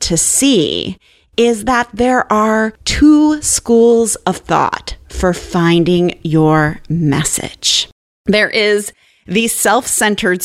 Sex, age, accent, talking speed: female, 30-49, American, 100 wpm